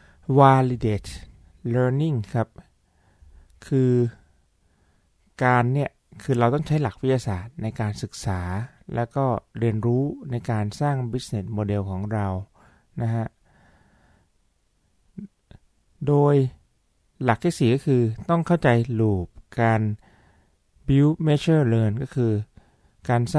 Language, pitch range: Thai, 105-130 Hz